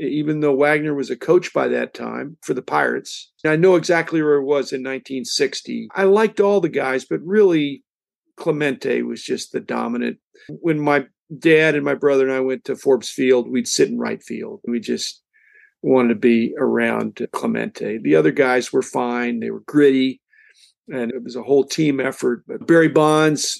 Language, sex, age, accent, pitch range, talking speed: English, male, 50-69, American, 125-165 Hz, 190 wpm